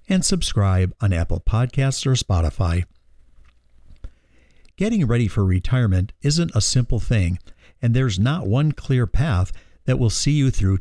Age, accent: 50-69, American